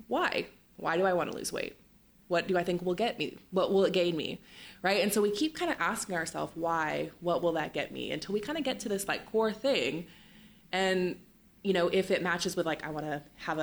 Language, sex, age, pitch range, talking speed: English, female, 20-39, 155-210 Hz, 250 wpm